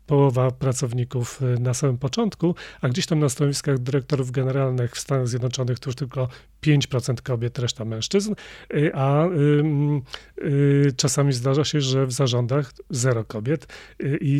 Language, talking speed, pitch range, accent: Polish, 135 wpm, 135-160 Hz, native